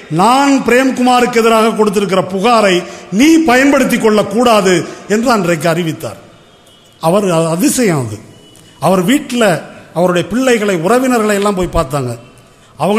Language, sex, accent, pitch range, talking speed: Tamil, male, native, 140-210 Hz, 105 wpm